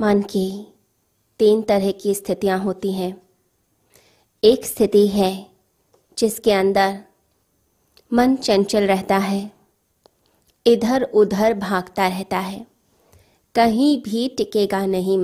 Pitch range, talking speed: 190-225 Hz, 100 wpm